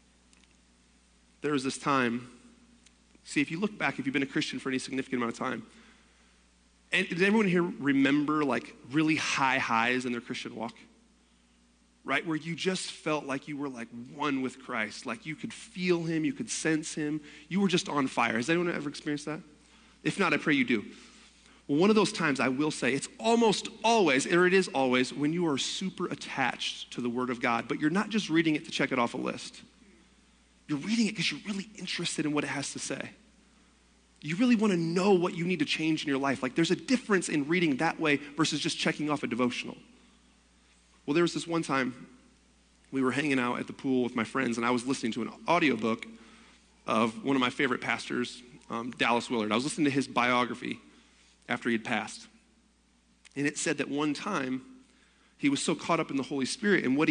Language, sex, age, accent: English, male, 30-49, American